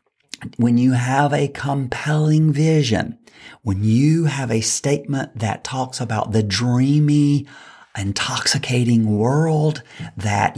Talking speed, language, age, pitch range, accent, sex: 110 wpm, English, 40-59, 115-150 Hz, American, male